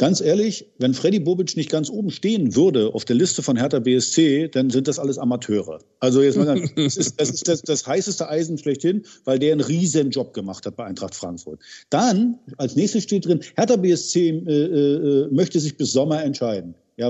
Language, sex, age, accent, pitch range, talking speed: German, male, 50-69, German, 130-190 Hz, 205 wpm